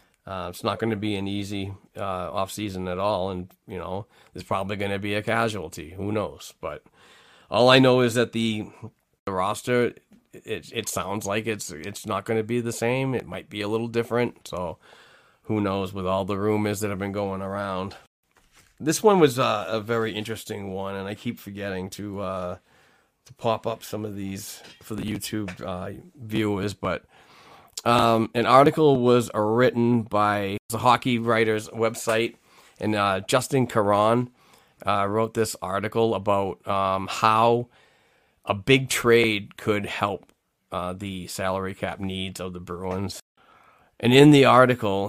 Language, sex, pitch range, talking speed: English, male, 100-115 Hz, 170 wpm